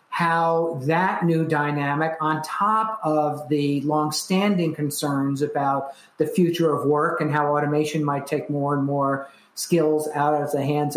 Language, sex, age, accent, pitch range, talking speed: English, male, 50-69, American, 150-175 Hz, 155 wpm